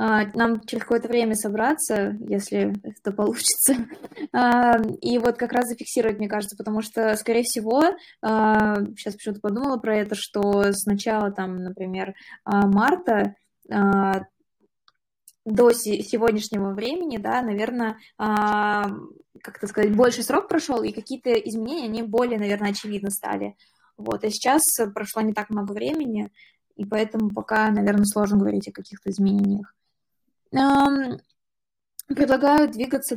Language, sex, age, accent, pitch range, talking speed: Russian, female, 20-39, native, 205-240 Hz, 120 wpm